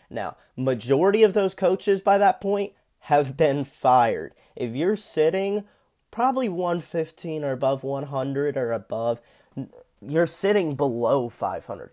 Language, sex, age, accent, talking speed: English, male, 20-39, American, 125 wpm